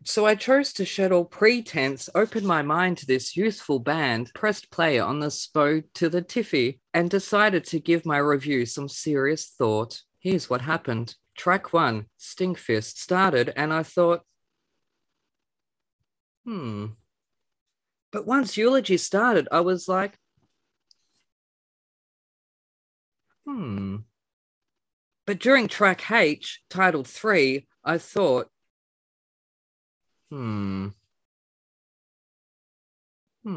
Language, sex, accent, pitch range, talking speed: English, female, Australian, 125-190 Hz, 105 wpm